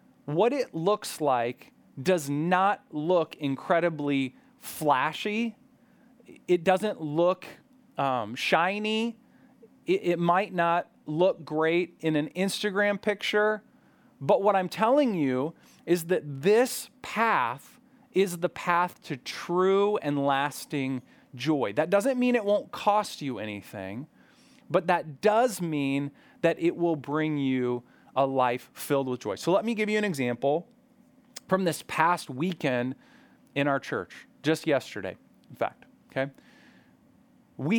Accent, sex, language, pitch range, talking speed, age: American, male, English, 145-210 Hz, 130 wpm, 30-49